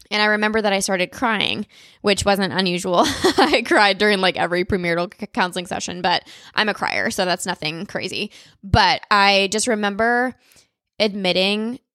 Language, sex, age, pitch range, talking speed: English, female, 10-29, 190-220 Hz, 155 wpm